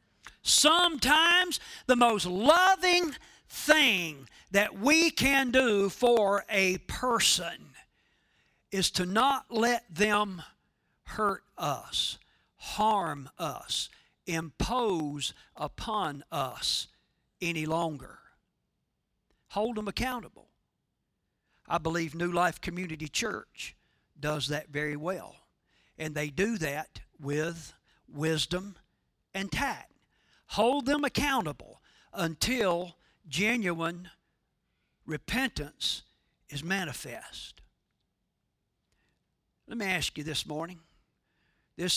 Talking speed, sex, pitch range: 90 wpm, male, 160-210 Hz